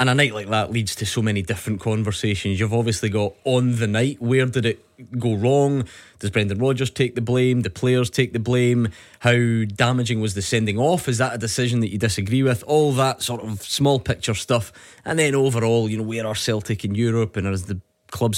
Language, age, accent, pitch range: English, 20-39, British, 105-125 Hz